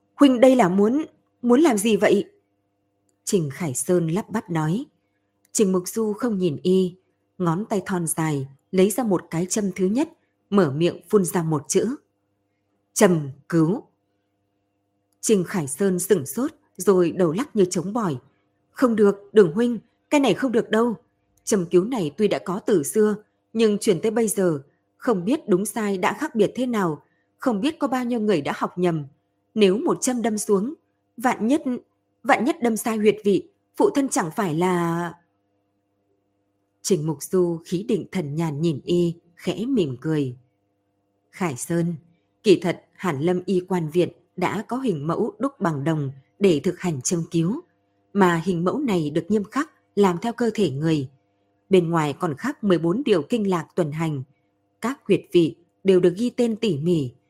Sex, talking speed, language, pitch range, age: female, 180 wpm, Vietnamese, 155-215 Hz, 20-39